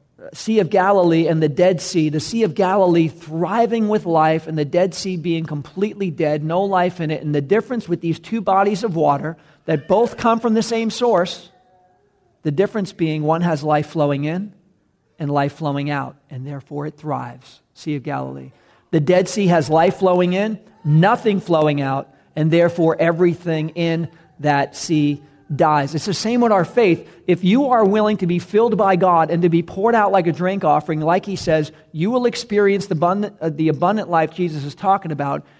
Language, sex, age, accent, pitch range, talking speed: English, male, 40-59, American, 150-190 Hz, 195 wpm